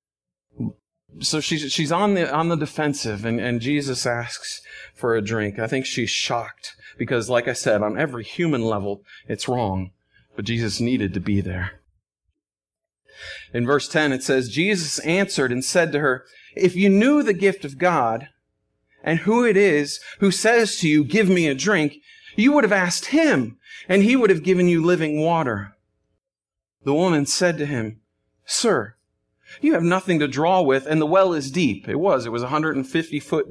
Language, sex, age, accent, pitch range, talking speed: English, male, 40-59, American, 130-200 Hz, 180 wpm